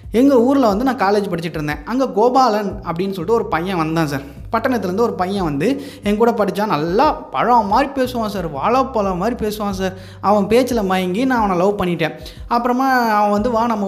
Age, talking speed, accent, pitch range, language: 20-39, 180 wpm, native, 150-215 Hz, Tamil